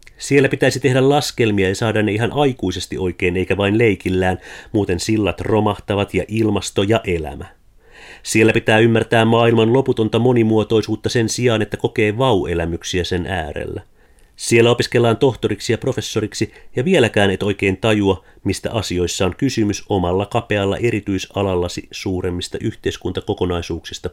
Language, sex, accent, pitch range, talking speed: Finnish, male, native, 95-115 Hz, 130 wpm